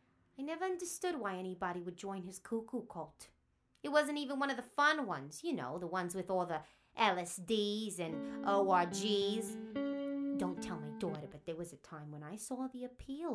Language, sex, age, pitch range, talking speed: English, female, 30-49, 150-215 Hz, 190 wpm